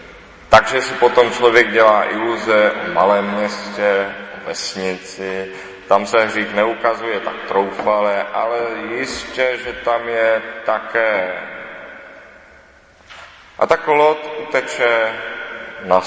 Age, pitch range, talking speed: 30-49, 105-150 Hz, 100 wpm